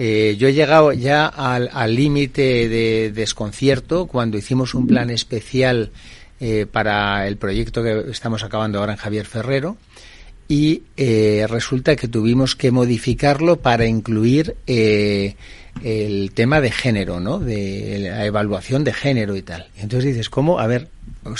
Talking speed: 150 wpm